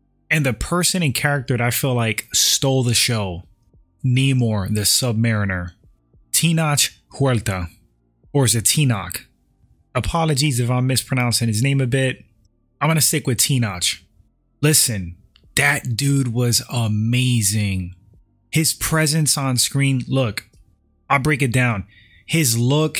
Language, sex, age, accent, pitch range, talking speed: English, male, 20-39, American, 110-140 Hz, 135 wpm